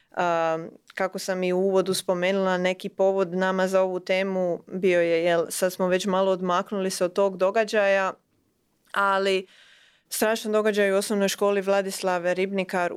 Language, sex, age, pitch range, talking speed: Croatian, female, 20-39, 180-200 Hz, 150 wpm